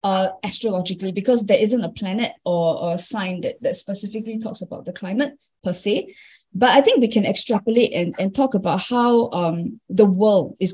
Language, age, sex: English, 20-39, female